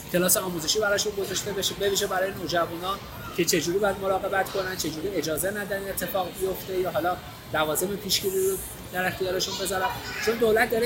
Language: Persian